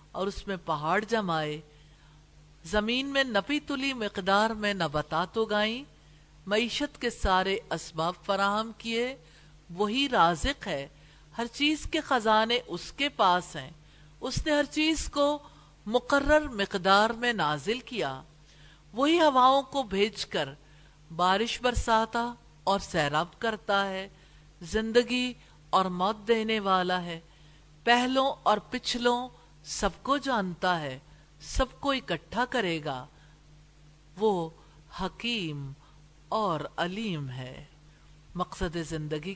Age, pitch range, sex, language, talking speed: 50-69, 155-235 Hz, female, English, 115 wpm